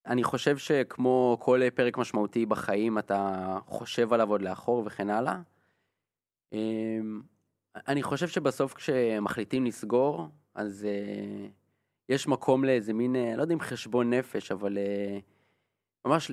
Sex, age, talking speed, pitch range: male, 20-39, 115 wpm, 105-130 Hz